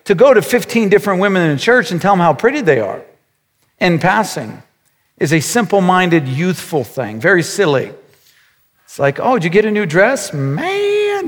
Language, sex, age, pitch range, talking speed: English, male, 50-69, 160-220 Hz, 185 wpm